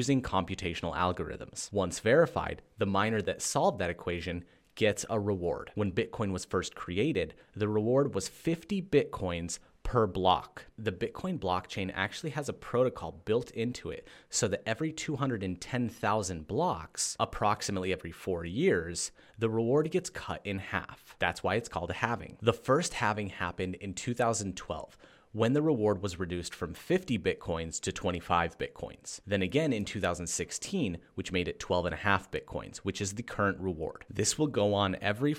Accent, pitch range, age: American, 90-115 Hz, 30-49